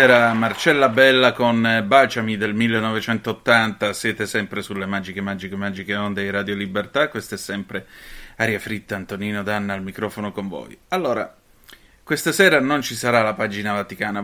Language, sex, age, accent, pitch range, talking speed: Italian, male, 30-49, native, 105-120 Hz, 150 wpm